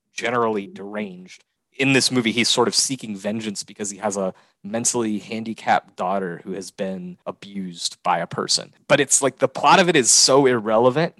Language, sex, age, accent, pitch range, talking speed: English, male, 30-49, American, 100-125 Hz, 180 wpm